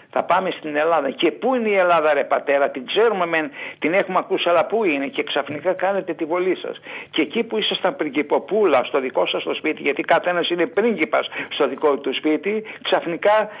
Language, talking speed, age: Greek, 205 wpm, 60-79